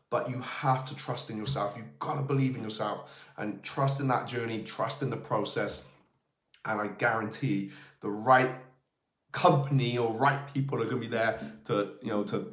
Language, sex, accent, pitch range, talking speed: English, male, British, 105-135 Hz, 190 wpm